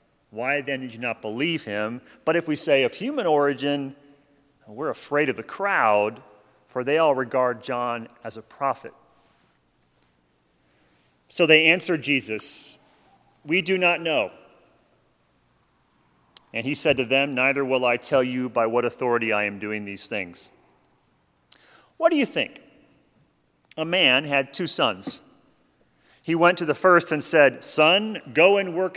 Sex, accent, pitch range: male, American, 115-160 Hz